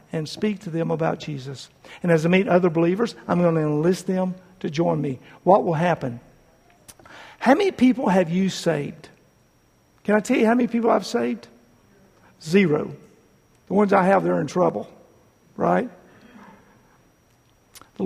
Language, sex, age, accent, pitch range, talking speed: English, male, 50-69, American, 160-220 Hz, 160 wpm